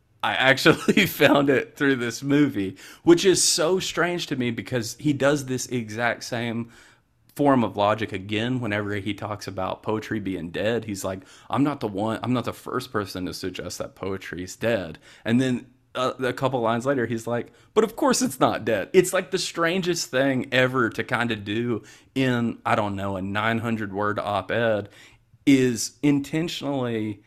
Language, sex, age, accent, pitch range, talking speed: English, male, 30-49, American, 105-130 Hz, 180 wpm